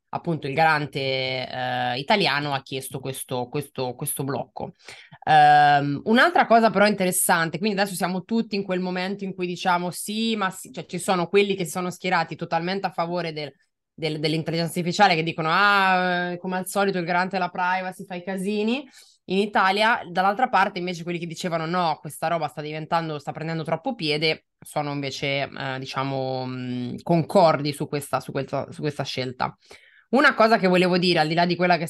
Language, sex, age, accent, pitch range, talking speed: Italian, female, 20-39, native, 150-185 Hz, 185 wpm